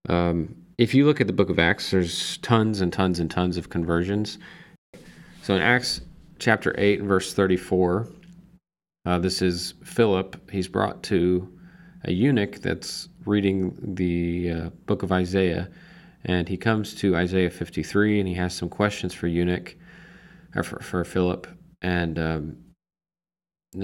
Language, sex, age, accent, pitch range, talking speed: English, male, 40-59, American, 90-125 Hz, 150 wpm